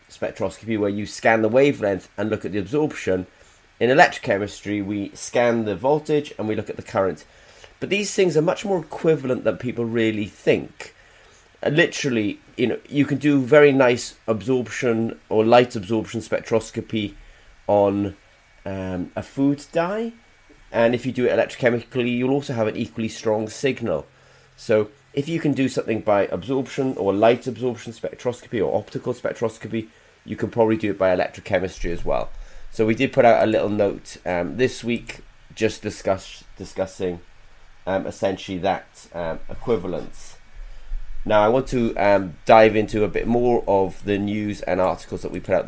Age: 30-49